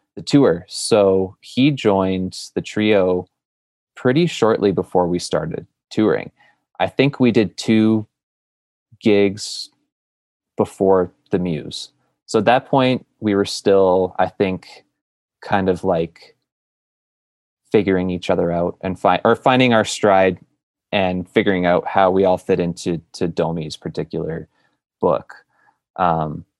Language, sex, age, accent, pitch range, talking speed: English, male, 20-39, American, 85-105 Hz, 130 wpm